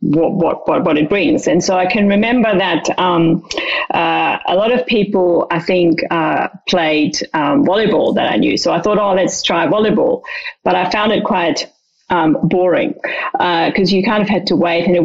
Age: 30-49